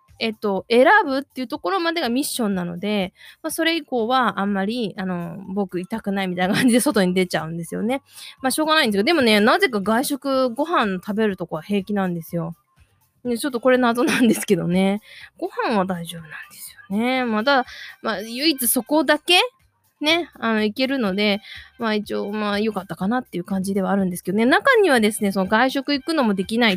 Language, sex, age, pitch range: Japanese, female, 20-39, 190-270 Hz